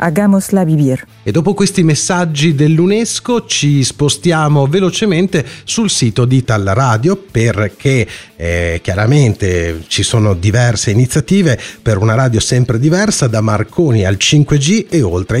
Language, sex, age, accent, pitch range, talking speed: Italian, male, 40-59, native, 105-160 Hz, 115 wpm